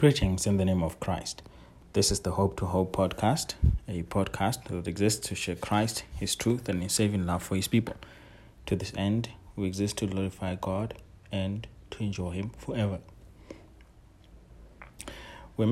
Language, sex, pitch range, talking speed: English, male, 90-110 Hz, 165 wpm